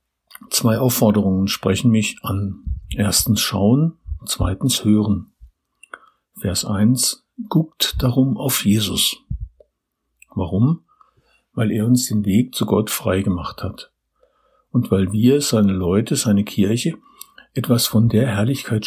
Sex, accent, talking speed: male, German, 120 wpm